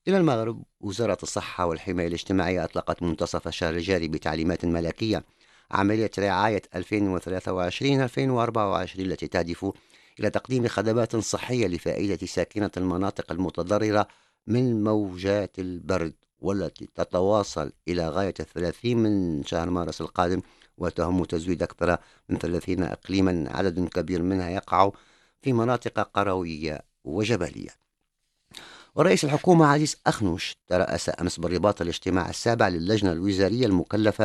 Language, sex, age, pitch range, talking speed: English, male, 50-69, 85-110 Hz, 110 wpm